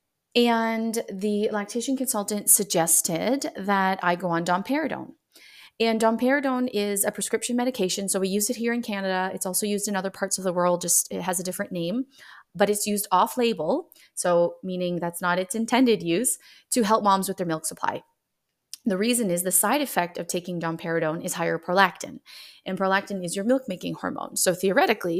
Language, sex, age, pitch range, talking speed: English, female, 30-49, 175-220 Hz, 180 wpm